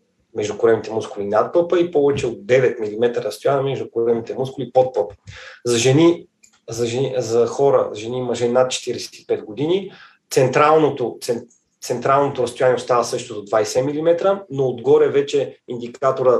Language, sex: Bulgarian, male